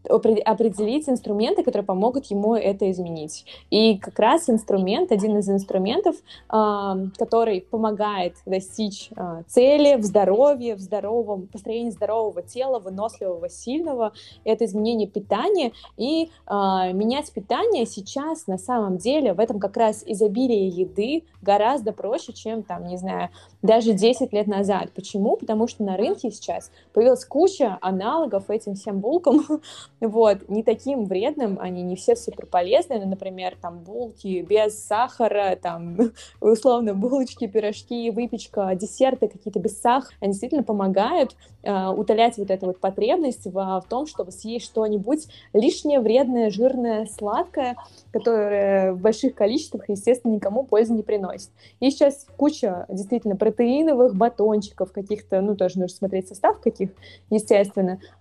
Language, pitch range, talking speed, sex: Russian, 195-245 Hz, 135 wpm, female